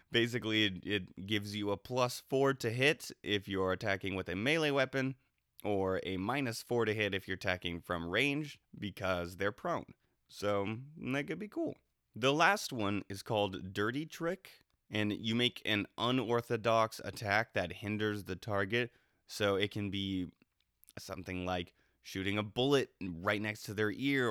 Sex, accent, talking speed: male, American, 165 wpm